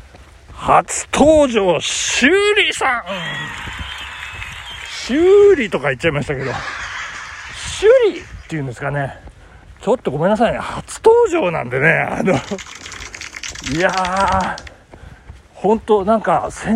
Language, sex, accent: Japanese, male, native